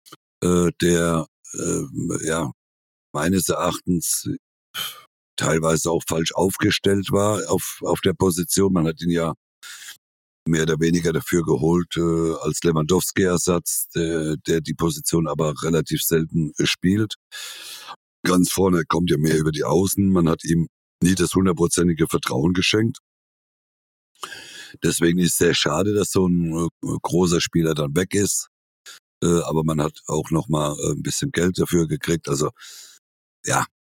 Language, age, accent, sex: German, 60-79, German, male